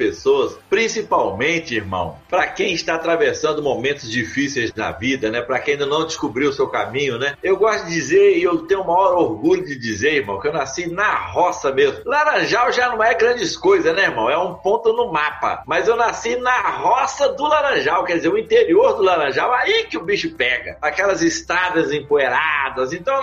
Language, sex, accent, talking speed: Portuguese, male, Brazilian, 195 wpm